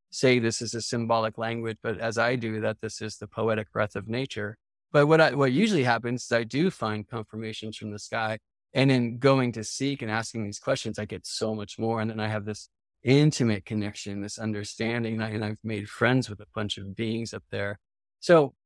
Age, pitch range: 20-39, 110-140 Hz